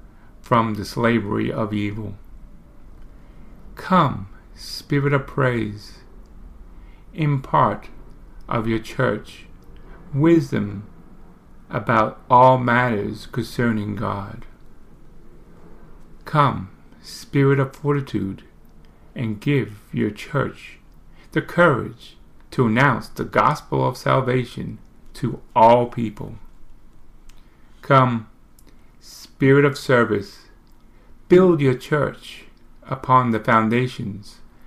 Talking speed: 85 wpm